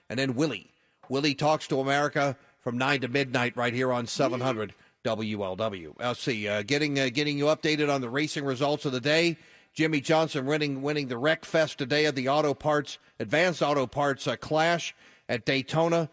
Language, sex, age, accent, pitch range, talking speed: English, male, 40-59, American, 125-150 Hz, 180 wpm